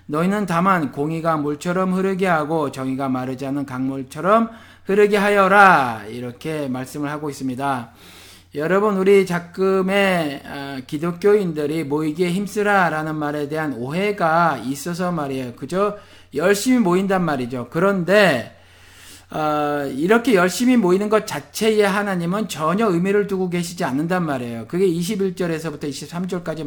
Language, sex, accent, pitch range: Korean, male, native, 145-210 Hz